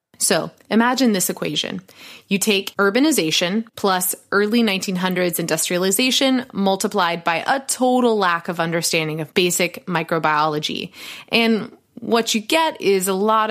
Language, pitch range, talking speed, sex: English, 175-235 Hz, 125 wpm, female